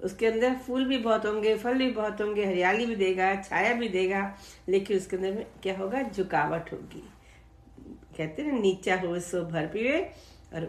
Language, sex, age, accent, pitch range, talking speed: Hindi, female, 60-79, native, 160-195 Hz, 185 wpm